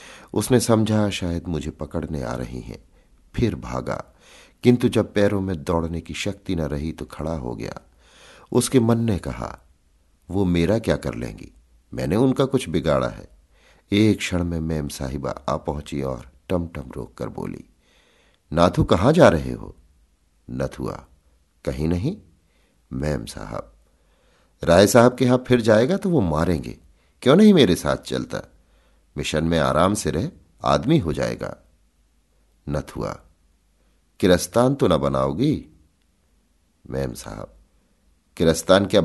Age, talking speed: 50-69, 140 wpm